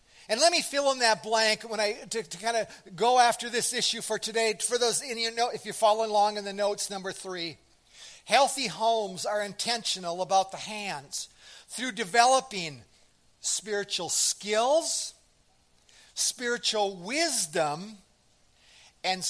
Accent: American